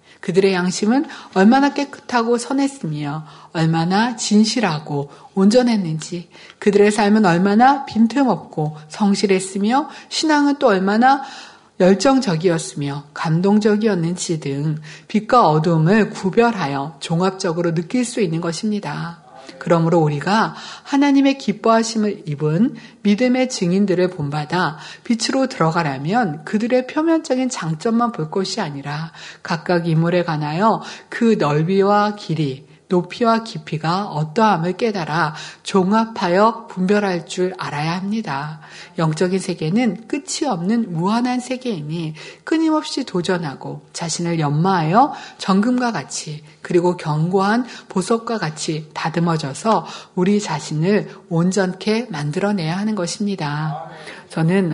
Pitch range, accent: 165-225 Hz, native